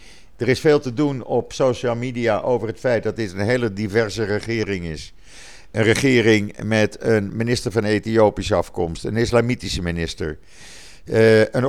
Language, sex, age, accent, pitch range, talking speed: Dutch, male, 50-69, Dutch, 90-115 Hz, 155 wpm